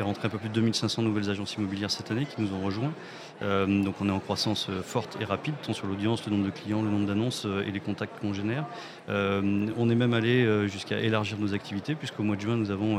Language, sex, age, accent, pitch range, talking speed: French, male, 30-49, French, 100-115 Hz, 255 wpm